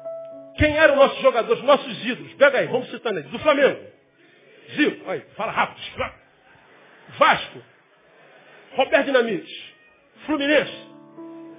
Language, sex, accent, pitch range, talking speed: Portuguese, male, Brazilian, 210-320 Hz, 115 wpm